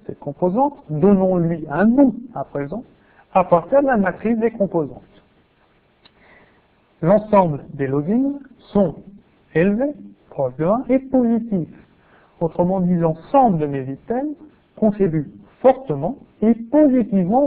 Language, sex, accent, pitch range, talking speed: French, male, French, 155-225 Hz, 115 wpm